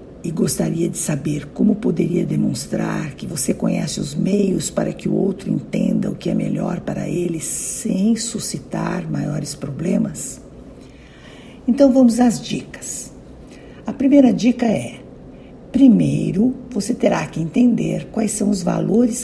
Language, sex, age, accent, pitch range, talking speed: Portuguese, female, 60-79, Brazilian, 185-235 Hz, 135 wpm